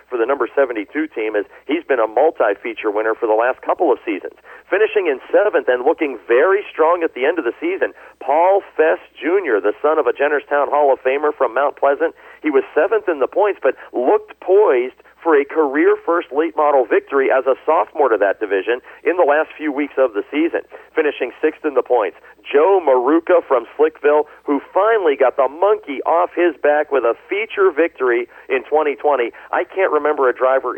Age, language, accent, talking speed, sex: 40-59, English, American, 195 wpm, male